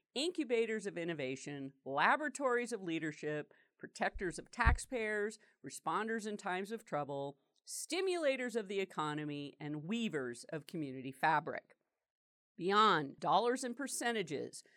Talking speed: 110 wpm